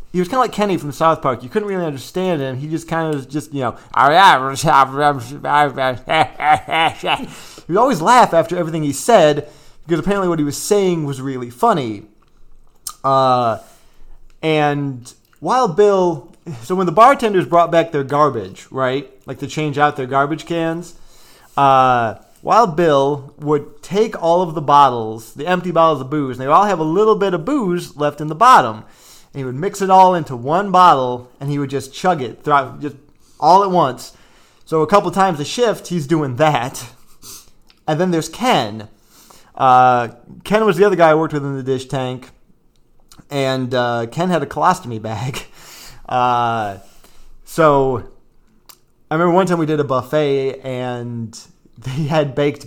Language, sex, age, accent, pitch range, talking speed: English, male, 30-49, American, 130-170 Hz, 175 wpm